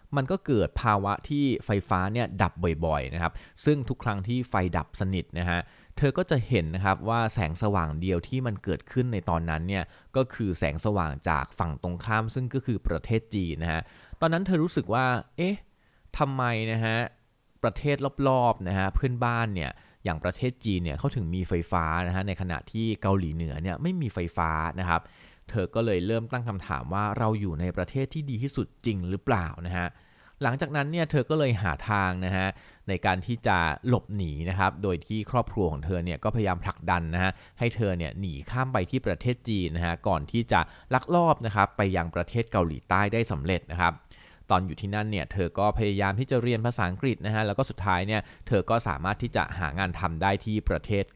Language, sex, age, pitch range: Thai, male, 20-39, 90-115 Hz